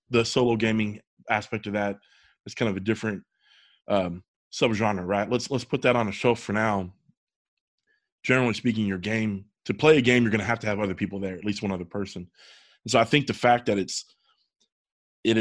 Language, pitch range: English, 100-120 Hz